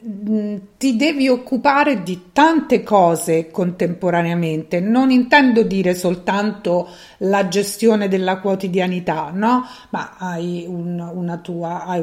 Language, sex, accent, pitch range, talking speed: Italian, female, native, 180-225 Hz, 90 wpm